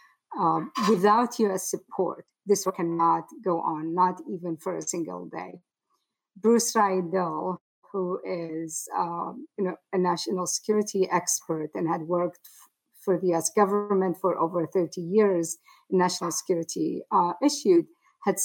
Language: English